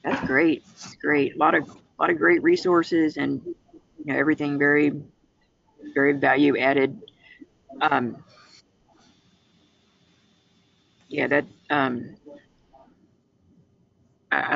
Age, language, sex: 40-59, English, female